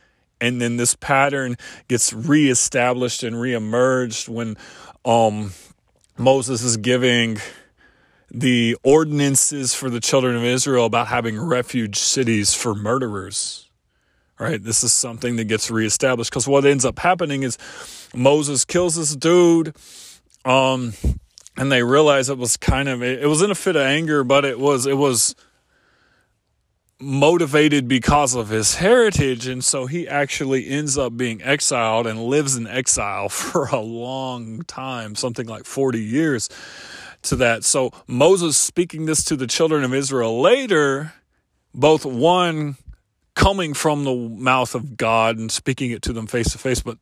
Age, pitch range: 20-39, 115-140 Hz